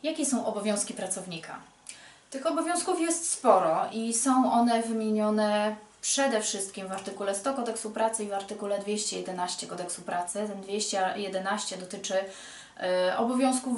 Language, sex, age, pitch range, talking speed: Polish, female, 20-39, 190-230 Hz, 125 wpm